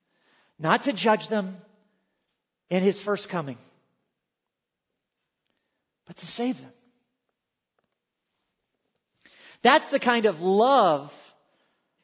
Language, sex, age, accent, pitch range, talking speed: English, male, 40-59, American, 170-250 Hz, 85 wpm